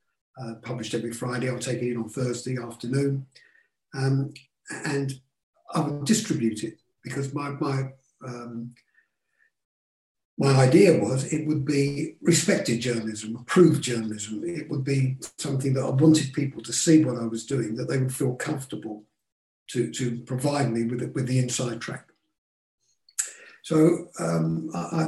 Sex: male